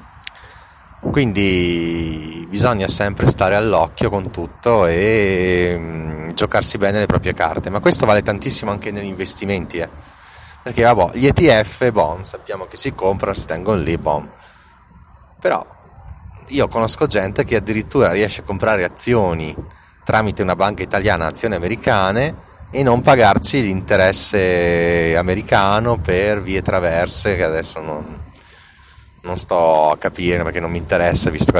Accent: native